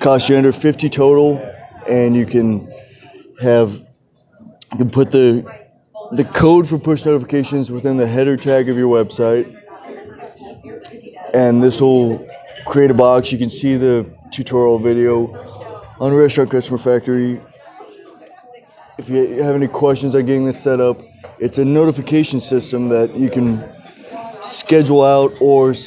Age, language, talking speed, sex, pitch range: 20-39, English, 140 wpm, male, 120-140 Hz